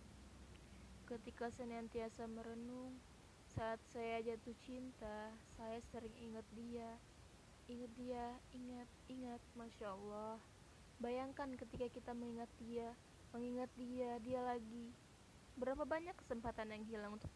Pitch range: 225-250 Hz